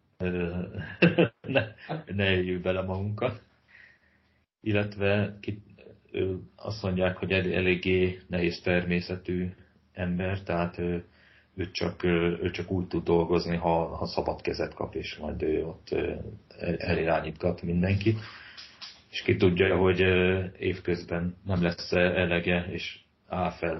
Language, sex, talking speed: Hungarian, male, 115 wpm